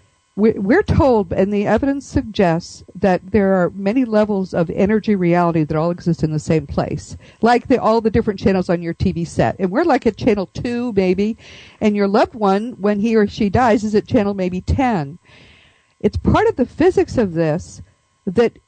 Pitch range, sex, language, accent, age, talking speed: 190-255 Hz, female, English, American, 50-69, 195 wpm